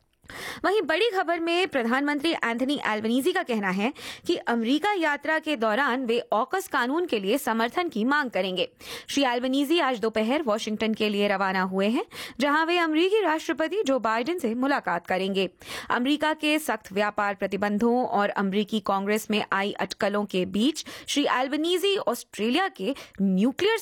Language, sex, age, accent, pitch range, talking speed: Hindi, female, 20-39, native, 195-285 Hz, 155 wpm